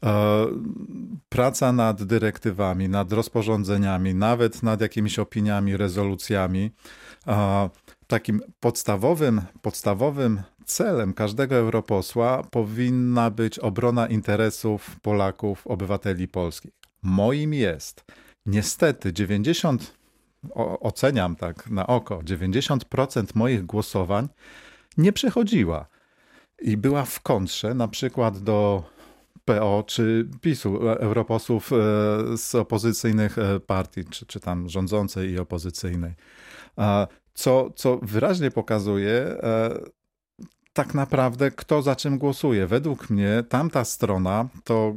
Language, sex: Polish, male